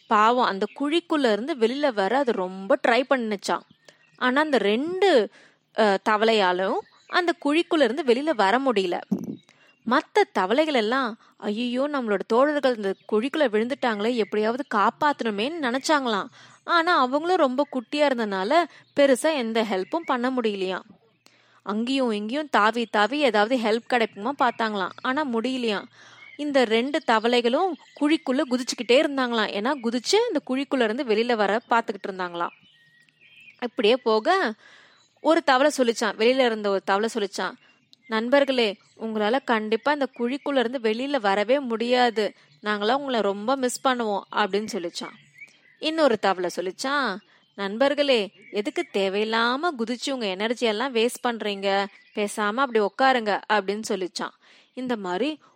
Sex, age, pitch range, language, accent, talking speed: female, 20-39, 210-275 Hz, Tamil, native, 90 wpm